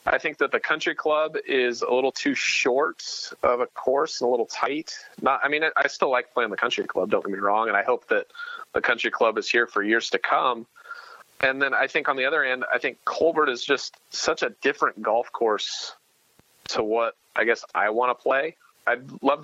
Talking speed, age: 225 wpm, 30-49